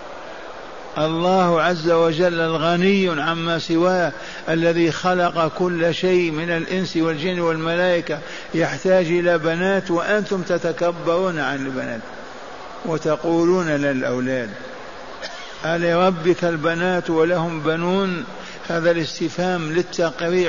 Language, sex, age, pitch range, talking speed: Arabic, male, 50-69, 155-175 Hz, 90 wpm